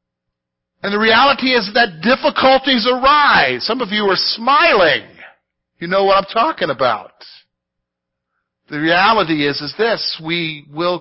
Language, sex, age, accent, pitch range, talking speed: English, male, 50-69, American, 180-250 Hz, 135 wpm